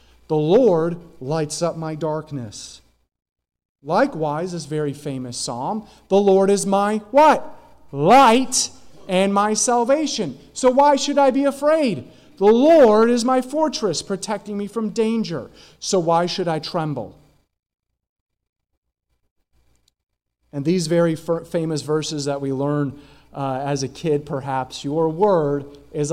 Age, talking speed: 40-59, 130 wpm